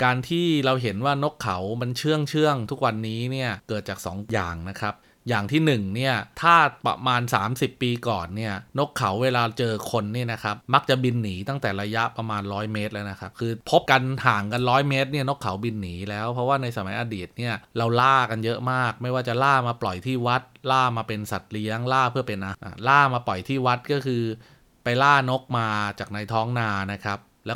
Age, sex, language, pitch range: 20-39, male, Thai, 105-130 Hz